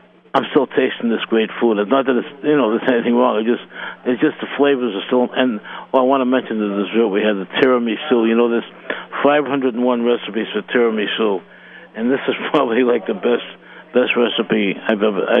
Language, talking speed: English, 205 wpm